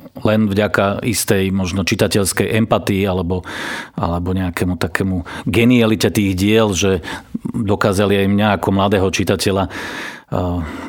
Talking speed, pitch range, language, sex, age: 115 wpm, 95-105 Hz, Slovak, male, 40-59